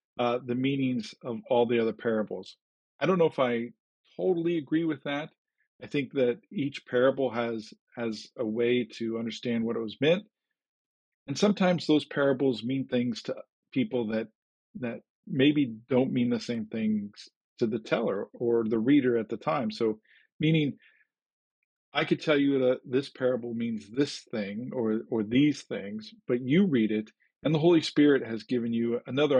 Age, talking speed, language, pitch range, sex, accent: 50-69, 175 wpm, English, 115-150 Hz, male, American